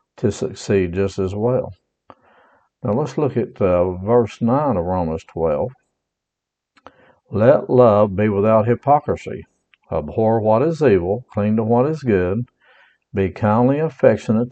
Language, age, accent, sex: English, 60-79, American, male